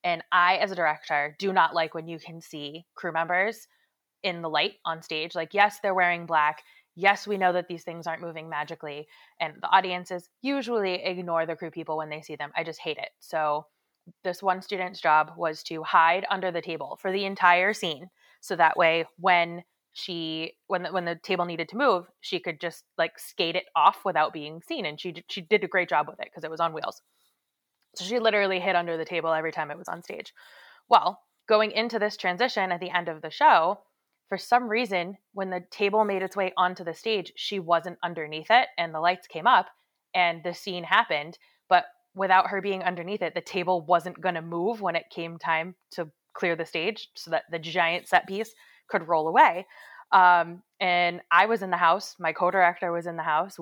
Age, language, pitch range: 20-39, English, 165-190 Hz